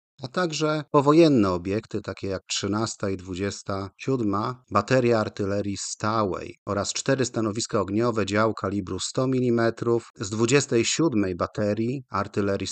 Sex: male